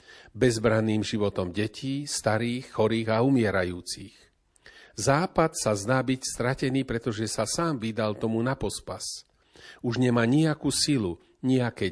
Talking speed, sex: 120 wpm, male